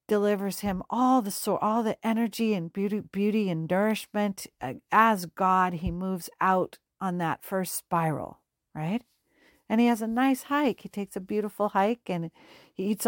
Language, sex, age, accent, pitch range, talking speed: English, female, 50-69, American, 175-215 Hz, 165 wpm